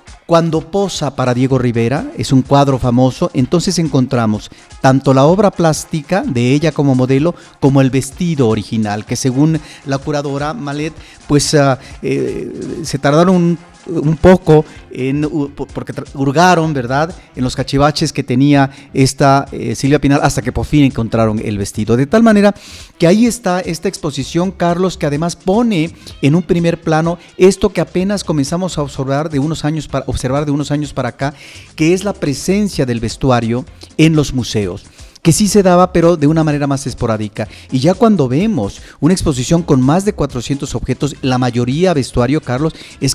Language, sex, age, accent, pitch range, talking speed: Spanish, male, 40-59, Mexican, 125-160 Hz, 170 wpm